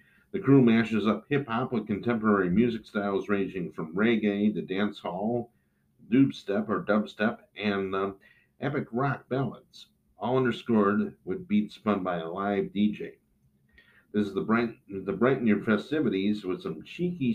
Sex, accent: male, American